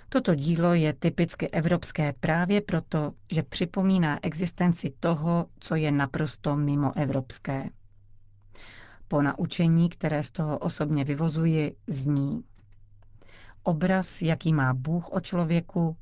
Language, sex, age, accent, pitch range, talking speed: Czech, female, 40-59, native, 140-175 Hz, 110 wpm